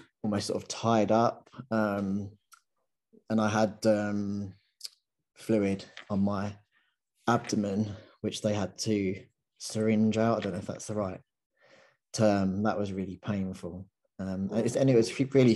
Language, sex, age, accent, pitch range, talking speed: English, male, 20-39, British, 100-110 Hz, 145 wpm